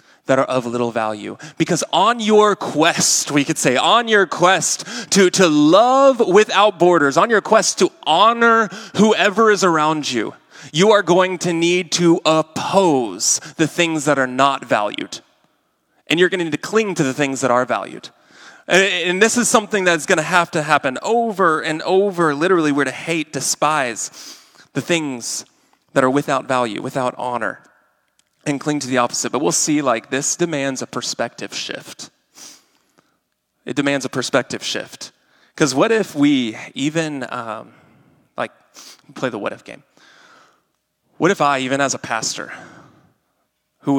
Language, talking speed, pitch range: English, 165 wpm, 135-185 Hz